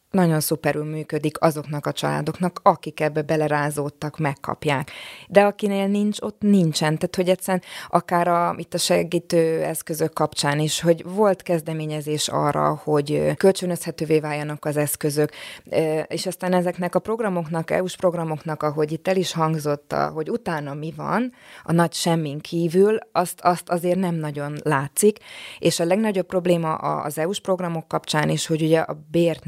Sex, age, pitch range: female, 20-39, 150-180 Hz